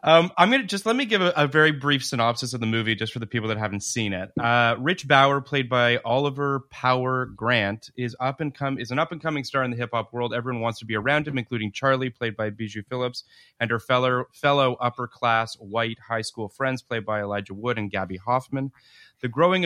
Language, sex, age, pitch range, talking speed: English, male, 30-49, 110-130 Hz, 240 wpm